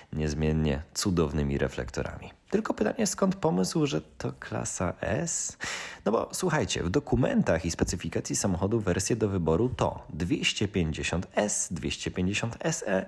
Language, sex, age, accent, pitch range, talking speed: Polish, male, 30-49, native, 85-130 Hz, 115 wpm